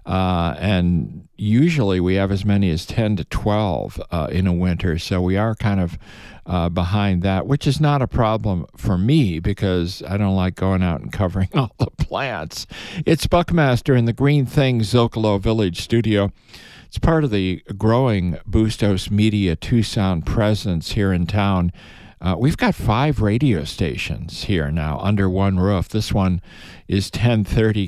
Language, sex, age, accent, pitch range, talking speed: English, male, 50-69, American, 90-110 Hz, 165 wpm